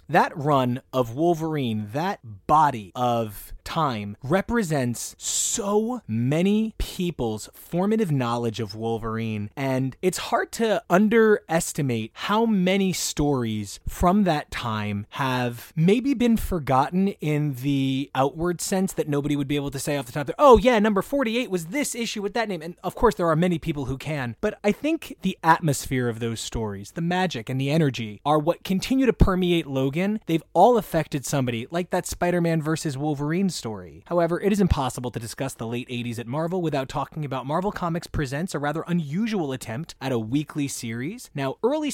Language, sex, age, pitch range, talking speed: English, male, 20-39, 130-185 Hz, 175 wpm